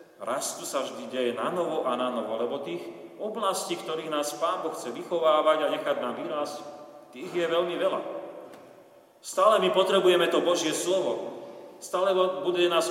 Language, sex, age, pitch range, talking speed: Slovak, male, 40-59, 125-170 Hz, 165 wpm